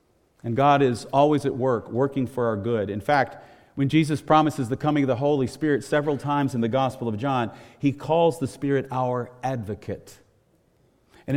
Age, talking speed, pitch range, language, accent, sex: 40-59, 185 wpm, 115-150 Hz, English, American, male